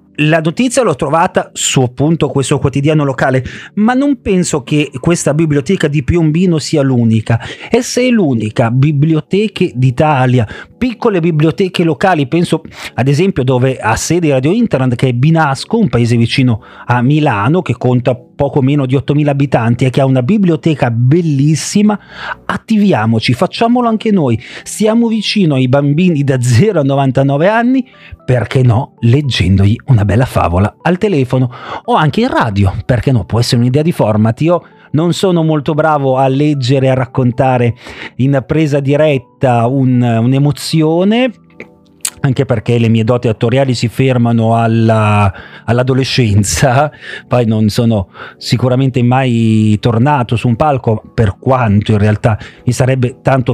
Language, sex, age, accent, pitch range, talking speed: Italian, male, 40-59, native, 120-165 Hz, 145 wpm